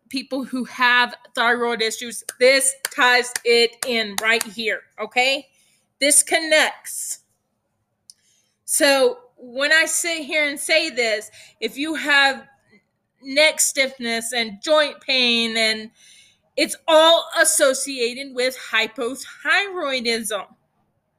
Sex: female